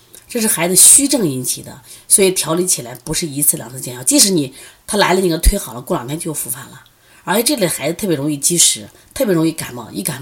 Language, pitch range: Chinese, 130-180 Hz